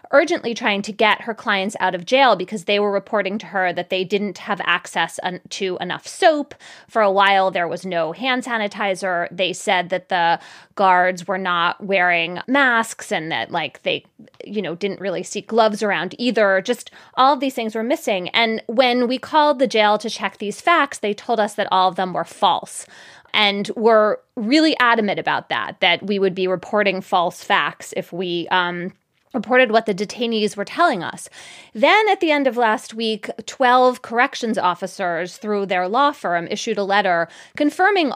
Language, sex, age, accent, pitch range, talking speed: English, female, 20-39, American, 190-245 Hz, 185 wpm